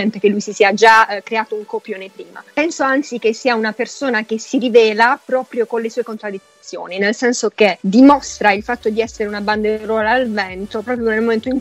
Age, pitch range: 20-39, 200-240 Hz